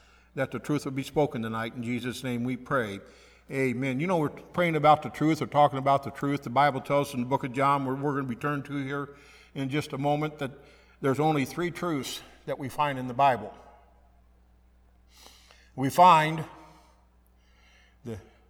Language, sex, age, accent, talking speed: English, male, 60-79, American, 190 wpm